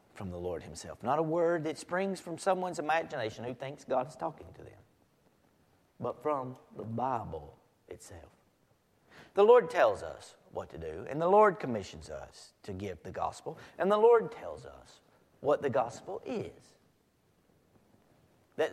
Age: 40-59